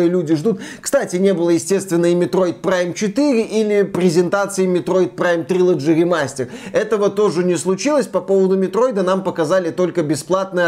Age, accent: 20-39, native